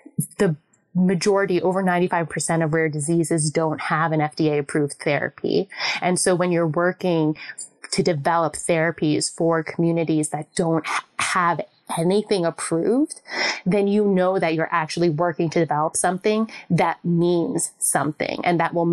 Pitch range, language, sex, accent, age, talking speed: 160-190 Hz, English, female, American, 20-39, 140 wpm